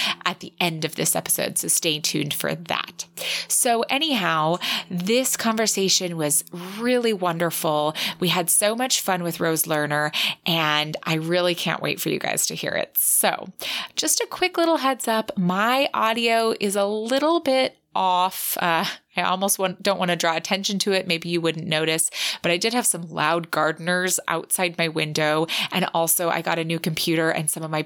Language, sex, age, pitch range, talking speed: English, female, 20-39, 160-210 Hz, 185 wpm